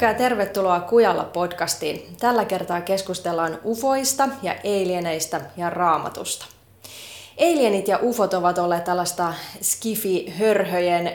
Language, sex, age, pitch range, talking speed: Finnish, female, 20-39, 160-195 Hz, 95 wpm